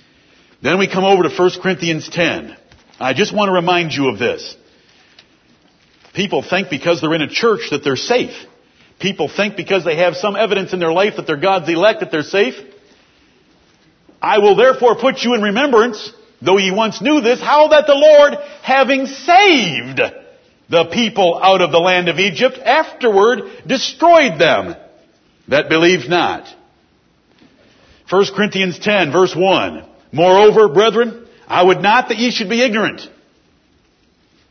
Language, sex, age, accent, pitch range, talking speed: English, male, 60-79, American, 180-230 Hz, 155 wpm